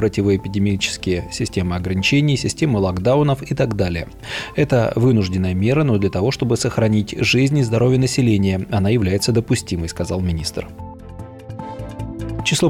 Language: Russian